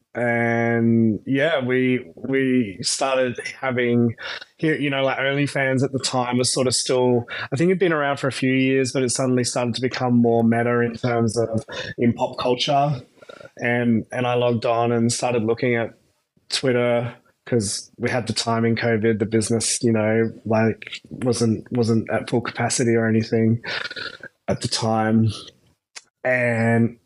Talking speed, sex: 165 wpm, male